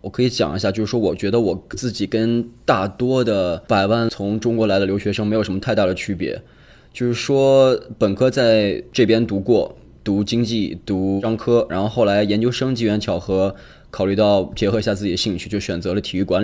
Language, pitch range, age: Chinese, 95-115 Hz, 20-39